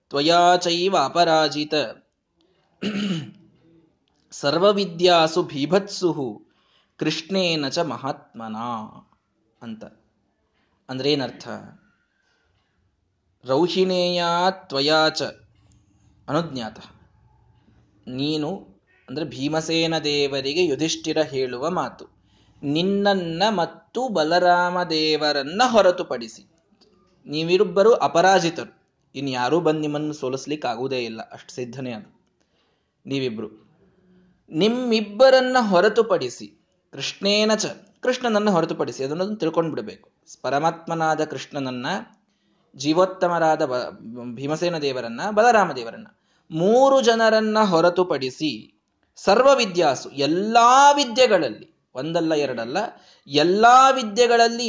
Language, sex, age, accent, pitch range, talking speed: Kannada, male, 20-39, native, 135-190 Hz, 65 wpm